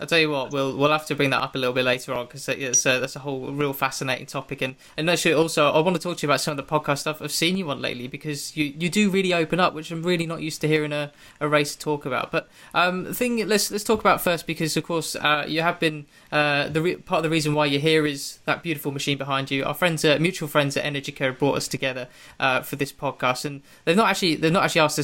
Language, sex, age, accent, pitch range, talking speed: English, male, 20-39, British, 140-165 Hz, 290 wpm